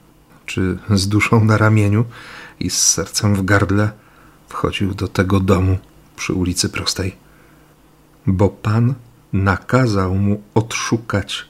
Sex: male